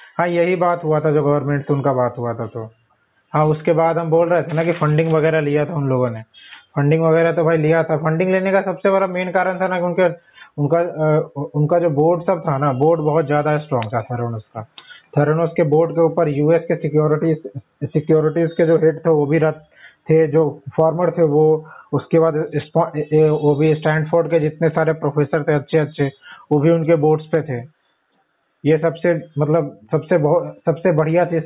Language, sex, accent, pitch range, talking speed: Hindi, male, native, 150-165 Hz, 195 wpm